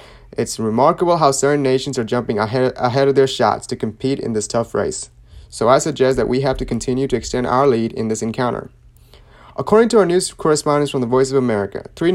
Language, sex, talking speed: English, male, 210 wpm